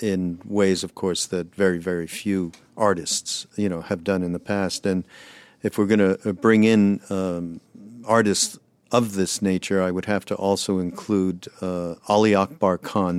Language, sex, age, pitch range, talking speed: English, male, 50-69, 95-110 Hz, 175 wpm